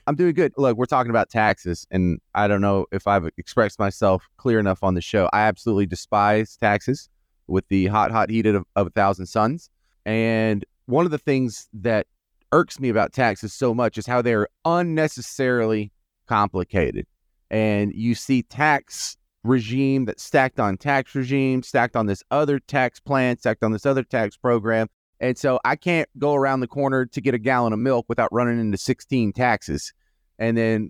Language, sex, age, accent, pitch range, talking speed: English, male, 30-49, American, 100-130 Hz, 185 wpm